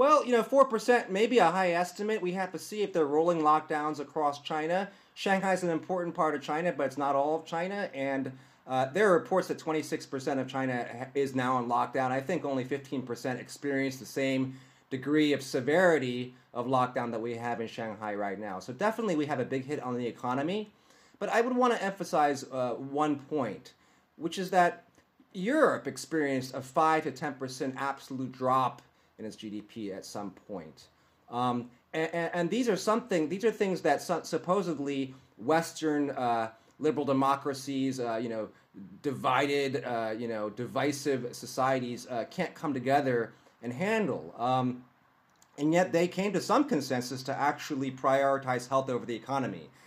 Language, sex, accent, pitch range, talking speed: English, male, American, 130-170 Hz, 175 wpm